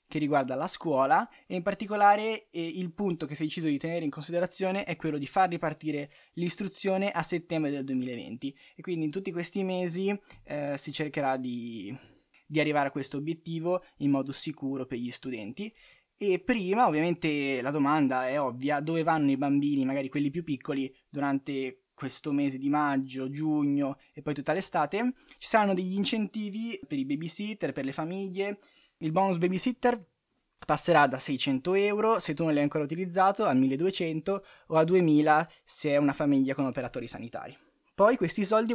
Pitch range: 140-190 Hz